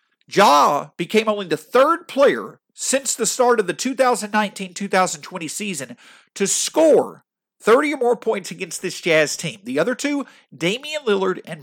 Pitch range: 170-230 Hz